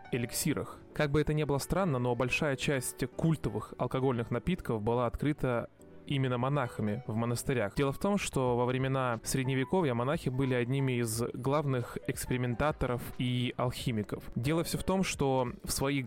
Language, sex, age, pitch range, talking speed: Russian, male, 20-39, 125-150 Hz, 155 wpm